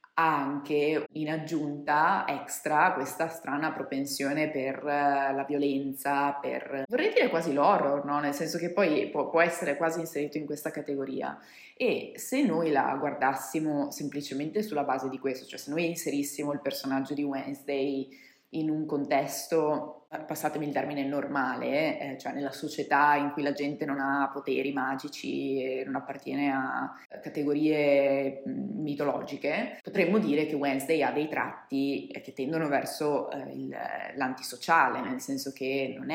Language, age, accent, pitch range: Italian, 20-39, native, 135-155 Hz